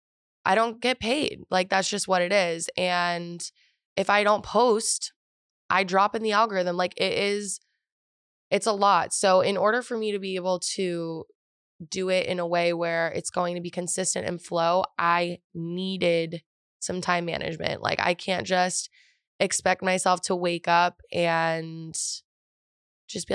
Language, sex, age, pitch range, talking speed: English, female, 20-39, 175-205 Hz, 165 wpm